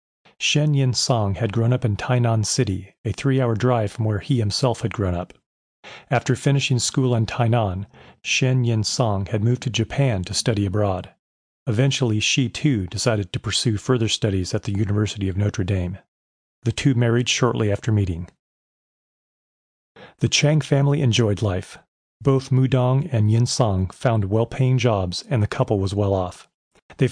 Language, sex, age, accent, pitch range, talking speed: English, male, 40-59, American, 105-130 Hz, 165 wpm